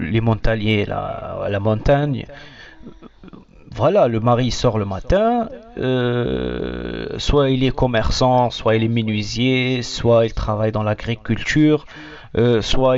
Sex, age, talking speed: male, 40-59, 125 wpm